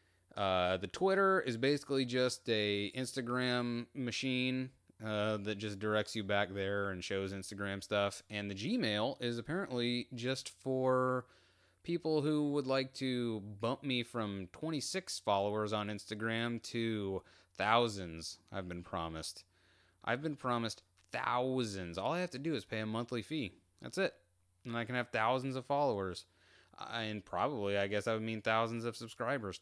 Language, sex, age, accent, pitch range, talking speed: English, male, 30-49, American, 95-130 Hz, 160 wpm